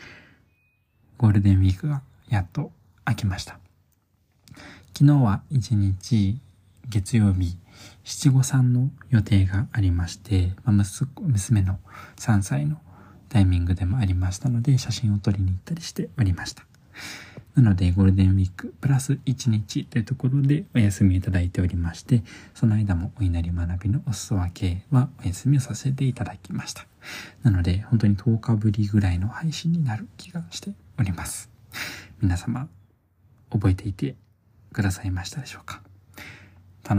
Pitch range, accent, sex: 95-125 Hz, native, male